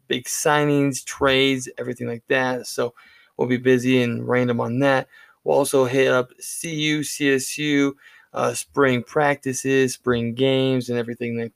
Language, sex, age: English, male, 20-39